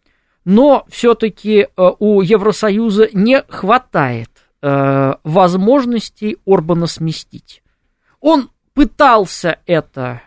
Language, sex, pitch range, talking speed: Russian, male, 150-220 Hz, 70 wpm